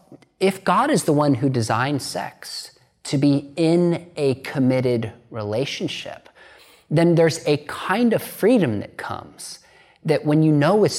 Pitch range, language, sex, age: 120-160 Hz, English, male, 30-49